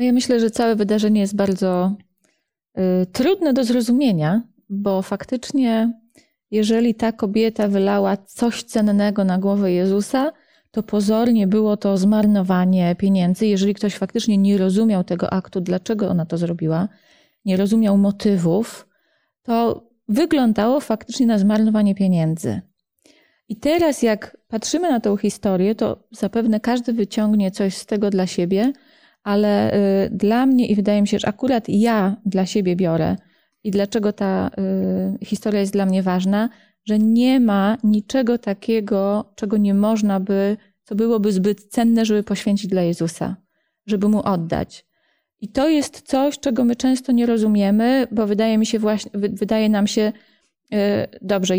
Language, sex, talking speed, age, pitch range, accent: Polish, female, 140 wpm, 30-49, 195-230 Hz, native